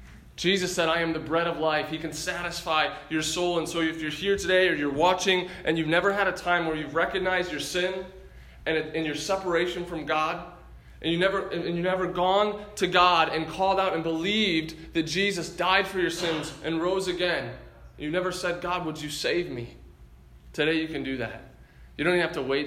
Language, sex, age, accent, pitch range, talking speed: English, male, 20-39, American, 145-175 Hz, 220 wpm